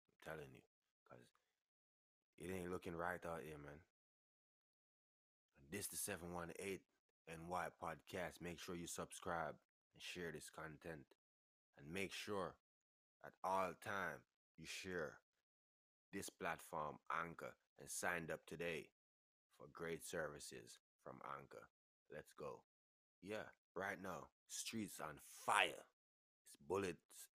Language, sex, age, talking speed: English, male, 20-39, 125 wpm